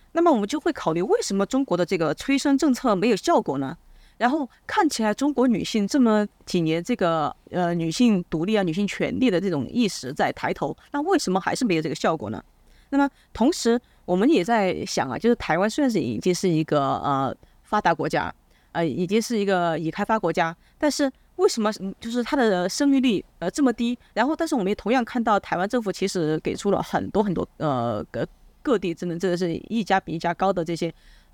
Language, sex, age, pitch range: Chinese, female, 30-49, 170-255 Hz